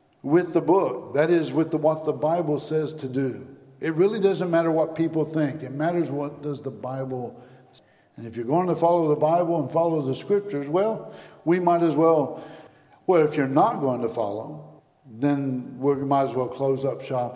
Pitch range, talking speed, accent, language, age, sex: 130-160 Hz, 205 wpm, American, English, 60-79, male